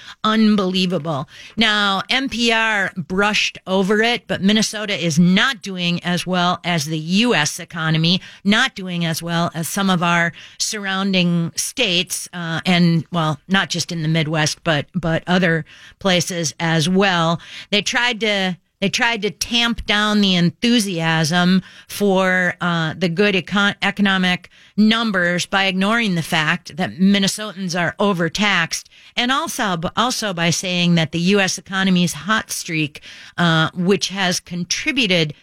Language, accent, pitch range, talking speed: English, American, 175-205 Hz, 135 wpm